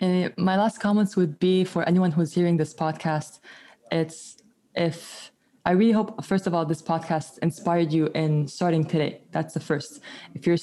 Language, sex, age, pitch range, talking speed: English, female, 20-39, 160-200 Hz, 180 wpm